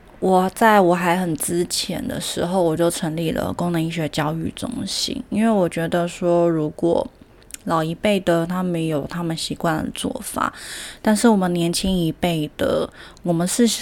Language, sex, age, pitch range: Chinese, female, 20-39, 170-205 Hz